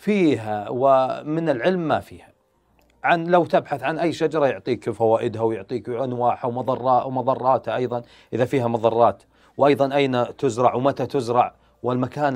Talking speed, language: 130 wpm, Arabic